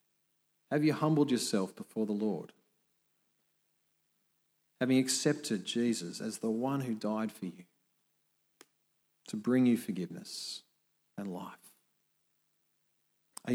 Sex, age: male, 40-59